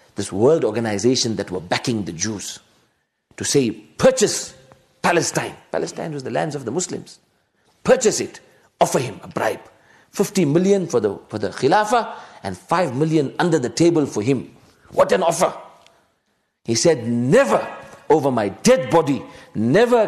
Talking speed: 150 wpm